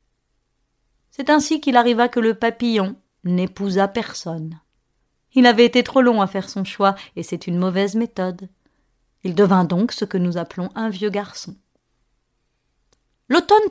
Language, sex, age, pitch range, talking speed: French, female, 30-49, 185-245 Hz, 150 wpm